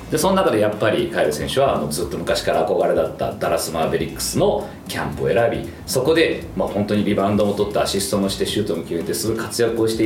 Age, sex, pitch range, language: 40-59, male, 95-160 Hz, Japanese